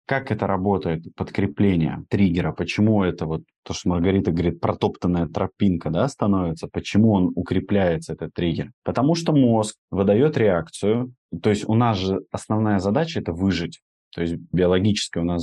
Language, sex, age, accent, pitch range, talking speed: Russian, male, 20-39, native, 90-115 Hz, 155 wpm